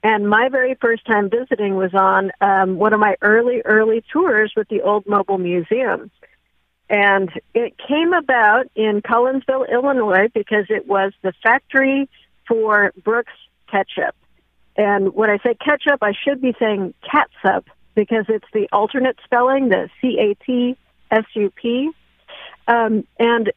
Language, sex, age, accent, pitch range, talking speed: English, female, 50-69, American, 210-265 Hz, 135 wpm